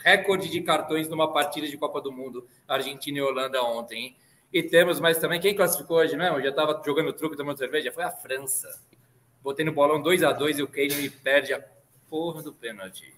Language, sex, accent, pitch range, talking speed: Portuguese, male, Brazilian, 140-185 Hz, 225 wpm